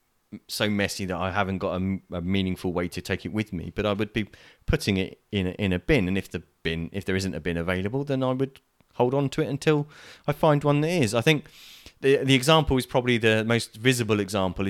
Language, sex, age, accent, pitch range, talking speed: English, male, 30-49, British, 95-115 Hz, 245 wpm